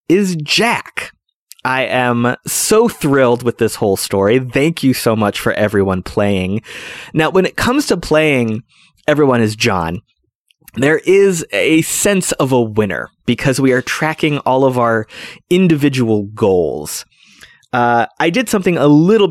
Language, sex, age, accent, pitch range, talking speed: English, male, 20-39, American, 115-160 Hz, 150 wpm